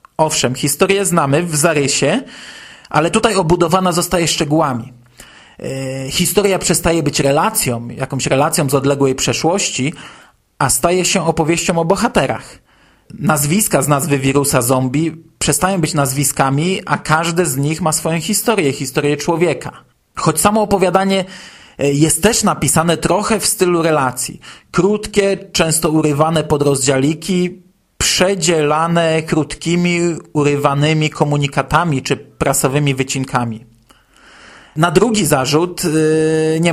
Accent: native